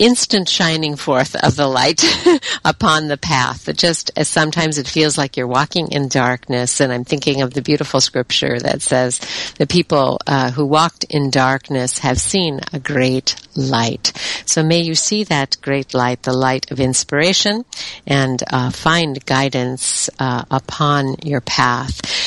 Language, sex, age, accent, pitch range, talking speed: English, female, 50-69, American, 130-155 Hz, 160 wpm